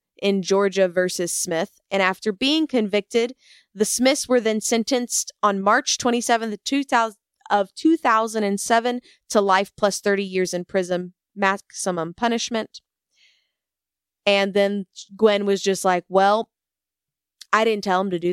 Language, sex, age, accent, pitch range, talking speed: English, female, 20-39, American, 190-255 Hz, 130 wpm